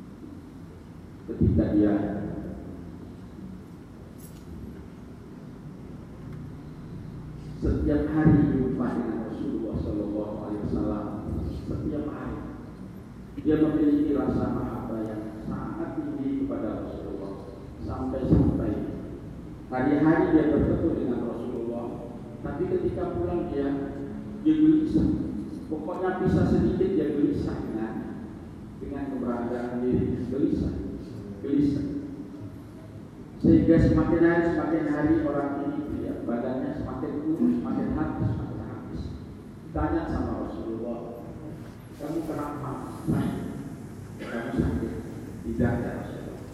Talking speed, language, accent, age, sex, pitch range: 85 wpm, Indonesian, native, 40-59, male, 105-150 Hz